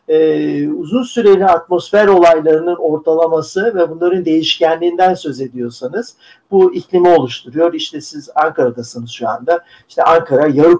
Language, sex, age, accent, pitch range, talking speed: Turkish, male, 50-69, native, 140-180 Hz, 115 wpm